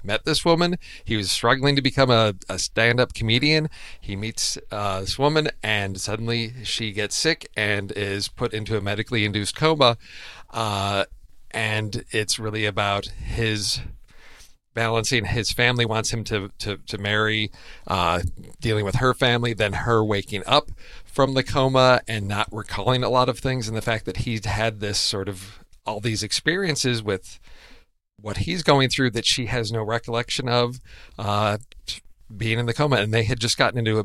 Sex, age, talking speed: male, 40-59, 175 wpm